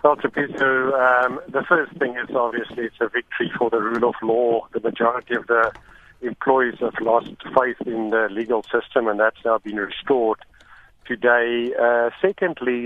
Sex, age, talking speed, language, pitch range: male, 50-69, 175 wpm, English, 110-130 Hz